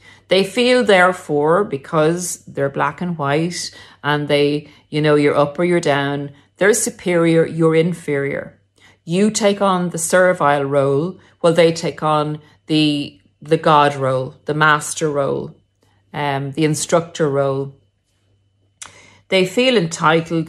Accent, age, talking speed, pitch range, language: Irish, 40-59, 130 wpm, 140-170 Hz, English